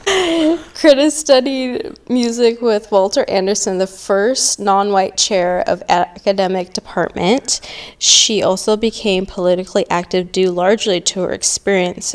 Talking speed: 115 wpm